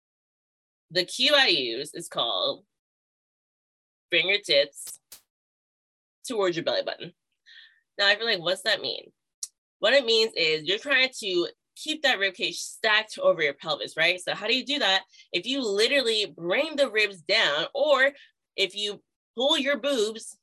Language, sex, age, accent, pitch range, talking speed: English, female, 20-39, American, 175-260 Hz, 160 wpm